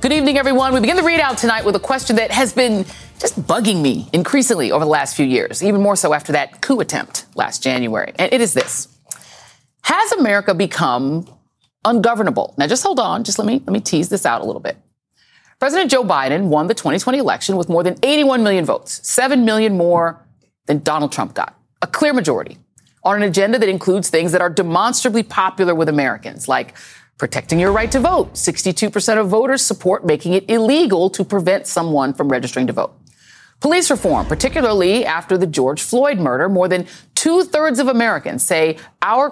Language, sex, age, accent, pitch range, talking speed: English, female, 30-49, American, 165-245 Hz, 195 wpm